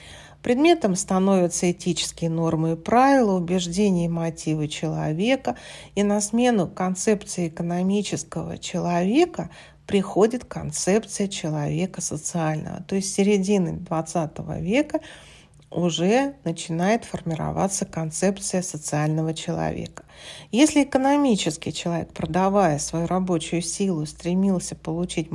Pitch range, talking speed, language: 165-205 Hz, 95 wpm, Russian